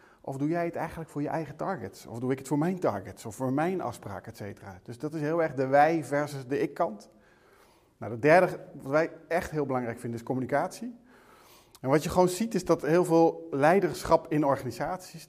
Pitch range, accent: 135-165 Hz, Dutch